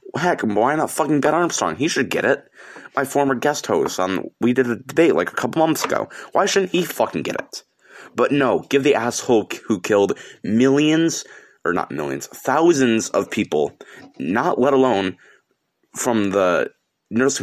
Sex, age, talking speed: male, 30-49, 170 wpm